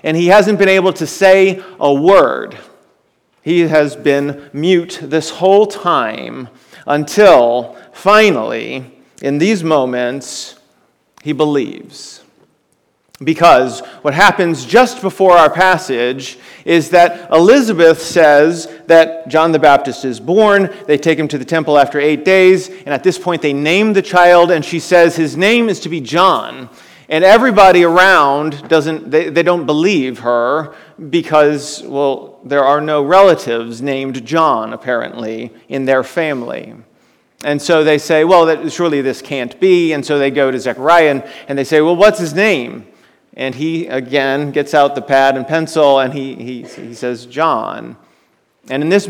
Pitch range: 140-180 Hz